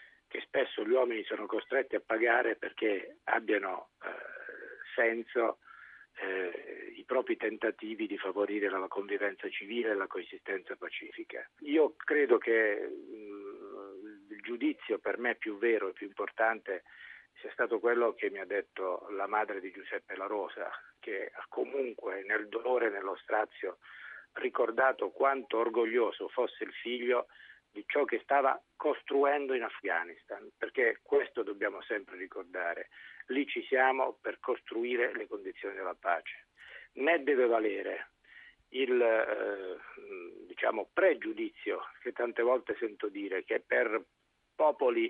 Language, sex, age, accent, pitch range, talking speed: Italian, male, 50-69, native, 315-460 Hz, 130 wpm